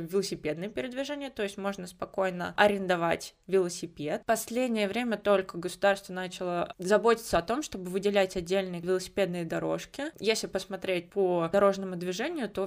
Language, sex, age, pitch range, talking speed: Russian, female, 20-39, 180-210 Hz, 130 wpm